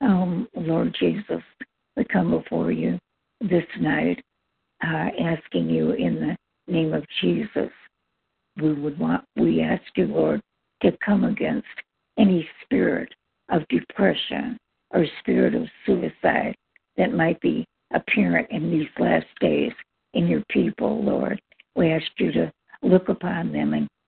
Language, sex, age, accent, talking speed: English, female, 60-79, American, 135 wpm